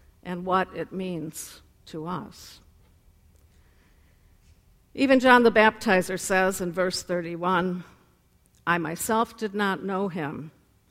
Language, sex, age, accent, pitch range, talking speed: English, female, 60-79, American, 160-215 Hz, 110 wpm